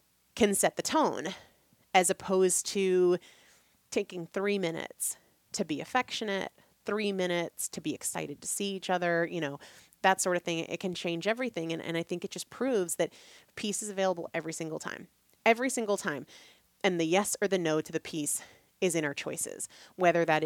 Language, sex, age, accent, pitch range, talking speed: English, female, 30-49, American, 165-225 Hz, 190 wpm